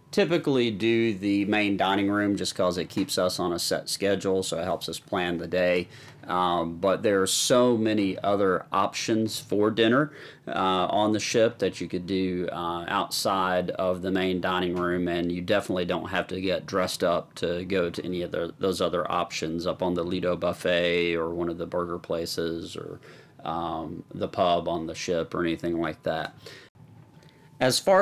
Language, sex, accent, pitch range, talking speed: English, male, American, 90-115 Hz, 190 wpm